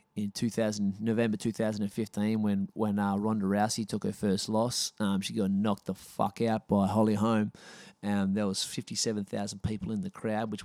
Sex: male